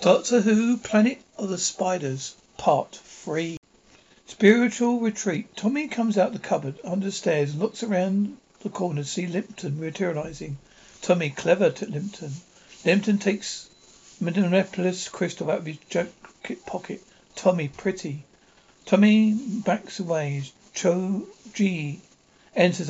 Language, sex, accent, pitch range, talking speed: English, male, British, 170-210 Hz, 125 wpm